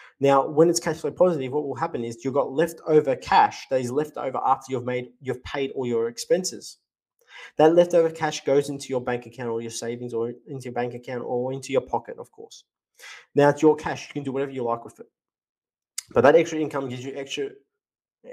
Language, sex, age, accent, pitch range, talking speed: English, male, 20-39, Australian, 130-165 Hz, 220 wpm